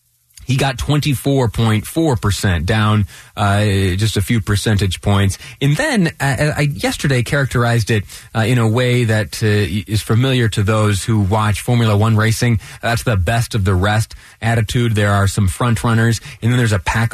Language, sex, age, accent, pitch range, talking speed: English, male, 30-49, American, 100-125 Hz, 170 wpm